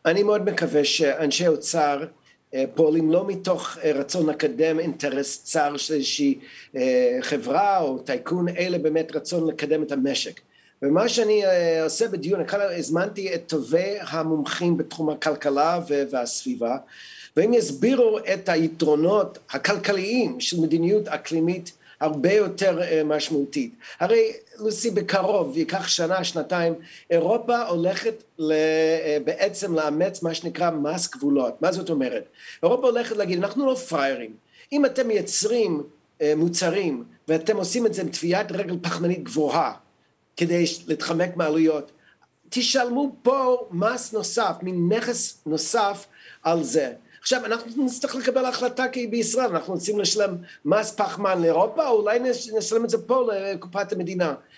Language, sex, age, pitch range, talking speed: Hebrew, male, 50-69, 160-220 Hz, 125 wpm